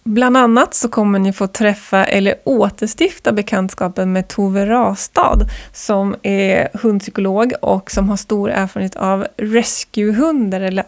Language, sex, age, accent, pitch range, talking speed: Swedish, female, 20-39, native, 195-240 Hz, 130 wpm